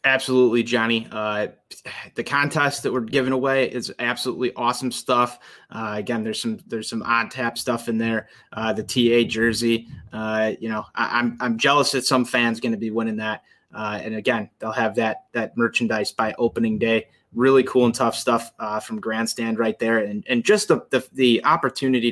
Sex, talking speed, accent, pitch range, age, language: male, 190 wpm, American, 110-135 Hz, 20-39, English